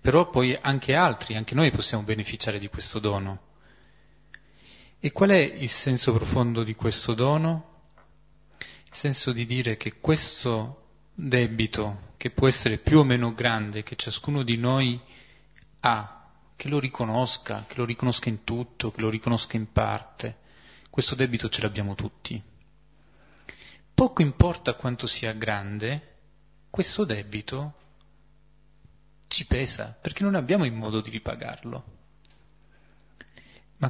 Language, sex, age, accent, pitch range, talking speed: Italian, male, 30-49, native, 110-140 Hz, 130 wpm